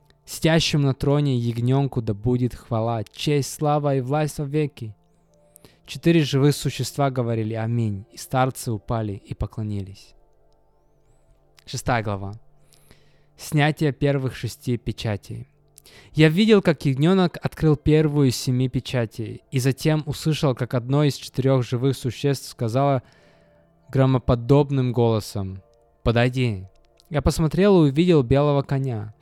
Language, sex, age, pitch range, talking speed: Russian, male, 20-39, 115-145 Hz, 115 wpm